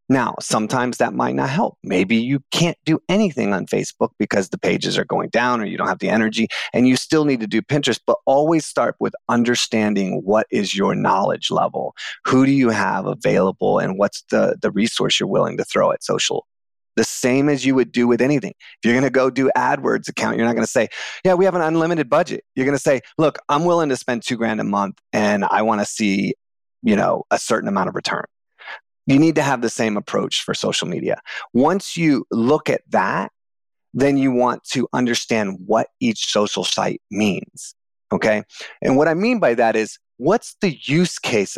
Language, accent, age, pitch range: English, American, 30-49, 110-155 Hz